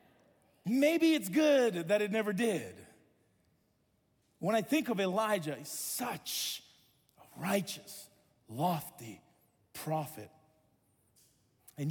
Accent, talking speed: American, 95 wpm